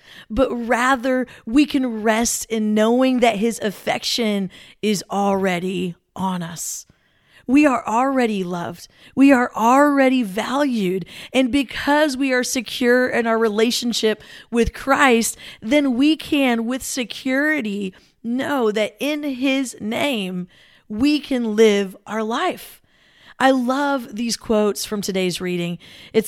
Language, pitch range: English, 205-260 Hz